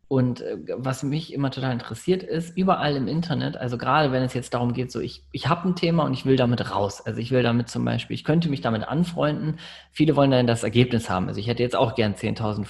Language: German